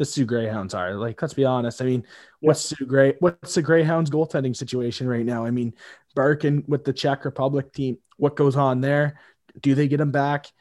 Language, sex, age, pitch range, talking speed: English, male, 20-39, 130-150 Hz, 210 wpm